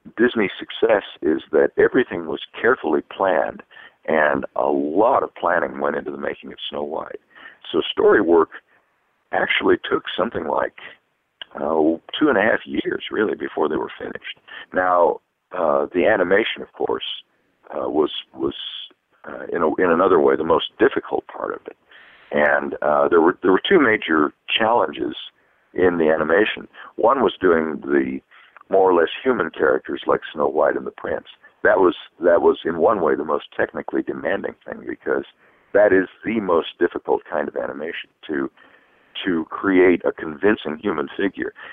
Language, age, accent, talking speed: English, 60-79, American, 165 wpm